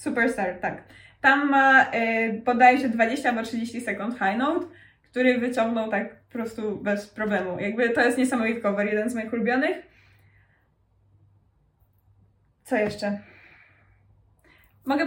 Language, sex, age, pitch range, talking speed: Polish, female, 20-39, 210-255 Hz, 125 wpm